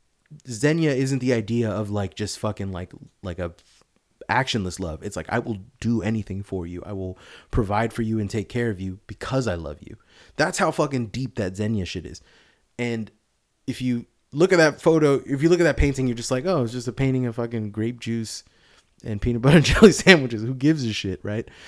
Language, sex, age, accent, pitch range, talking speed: English, male, 30-49, American, 105-130 Hz, 220 wpm